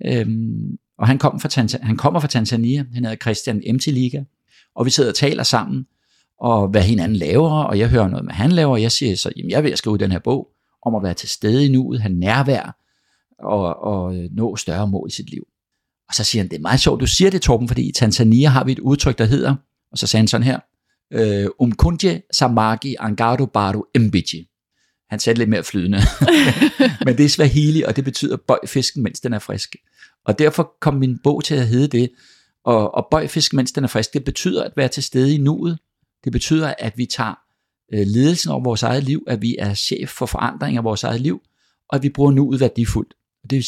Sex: male